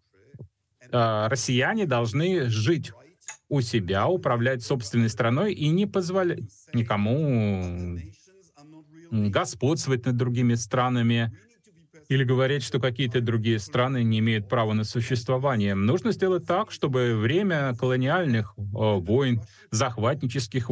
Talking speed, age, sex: 100 wpm, 30-49, male